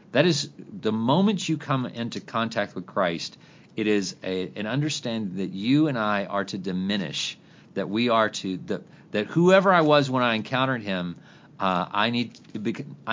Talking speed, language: 160 wpm, English